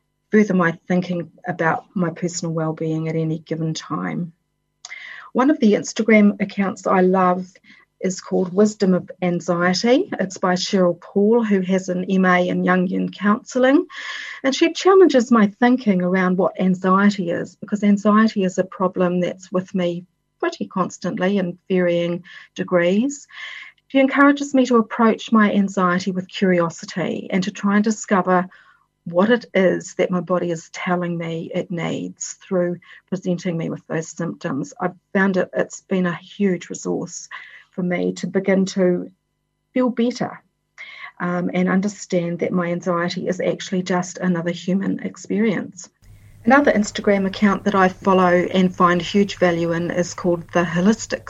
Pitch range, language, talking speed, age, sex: 175-205 Hz, English, 150 wpm, 40-59, female